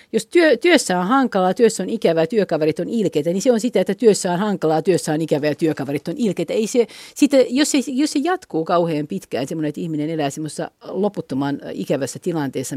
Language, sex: Finnish, female